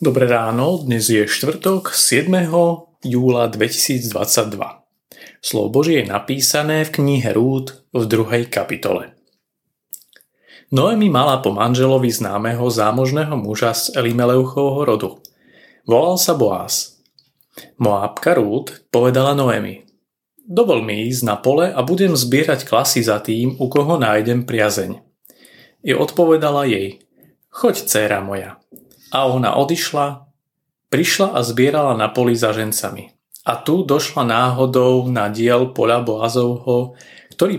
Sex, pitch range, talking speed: male, 115-140 Hz, 120 wpm